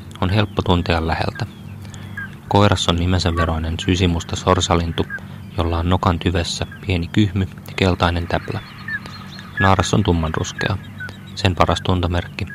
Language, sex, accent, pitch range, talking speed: Finnish, male, native, 85-100 Hz, 120 wpm